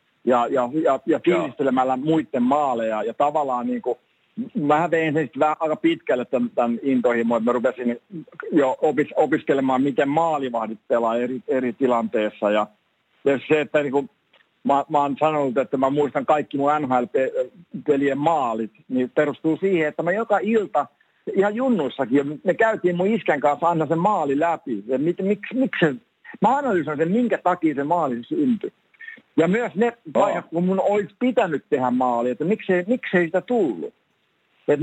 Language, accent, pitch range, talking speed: Finnish, native, 135-190 Hz, 150 wpm